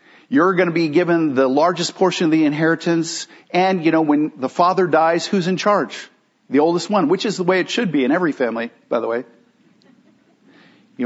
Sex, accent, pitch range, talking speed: male, American, 125-180 Hz, 200 wpm